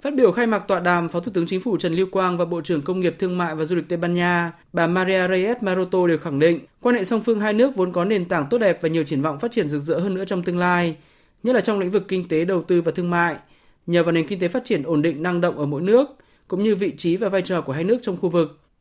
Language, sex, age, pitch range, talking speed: Vietnamese, male, 20-39, 170-200 Hz, 315 wpm